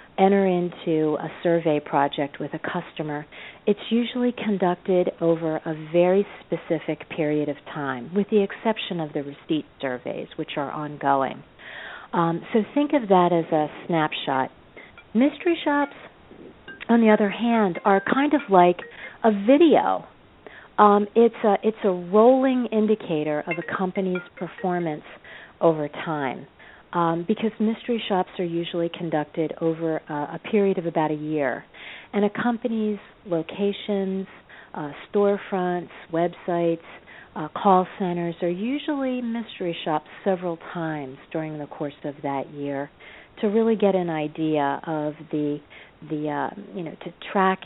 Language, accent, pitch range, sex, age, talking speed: English, American, 155-210 Hz, female, 40-59, 140 wpm